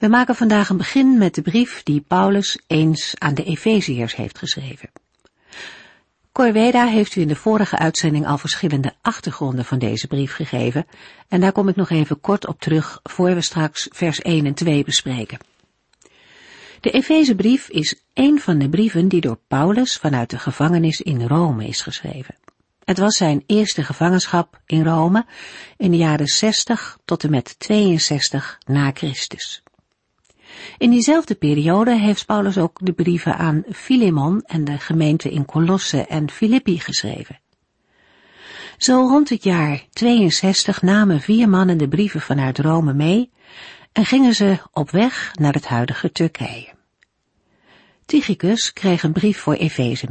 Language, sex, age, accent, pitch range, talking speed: Dutch, female, 50-69, Dutch, 150-205 Hz, 150 wpm